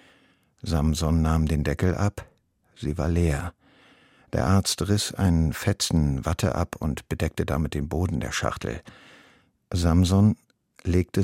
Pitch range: 80-100 Hz